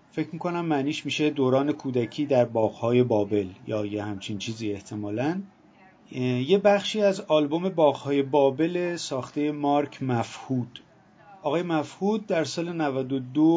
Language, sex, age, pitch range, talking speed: Persian, male, 30-49, 120-155 Hz, 125 wpm